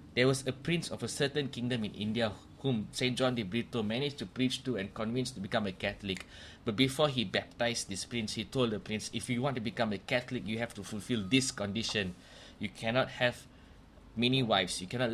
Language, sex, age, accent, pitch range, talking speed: English, male, 20-39, Malaysian, 100-125 Hz, 220 wpm